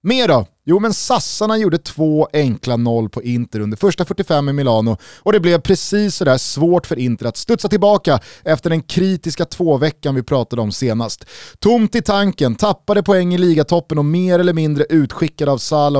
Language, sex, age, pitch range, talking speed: Swedish, male, 30-49, 130-185 Hz, 190 wpm